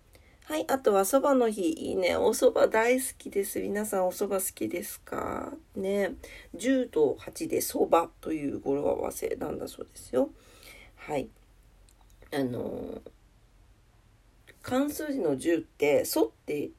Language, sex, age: Japanese, female, 40-59